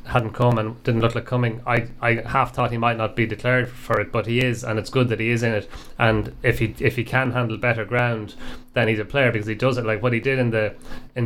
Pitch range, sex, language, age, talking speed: 110-125 Hz, male, English, 30-49, 280 wpm